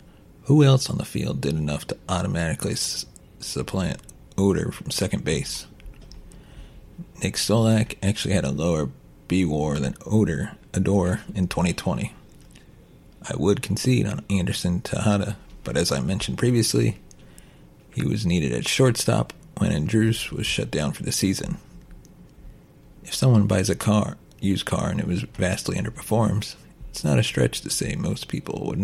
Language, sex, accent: English, male, American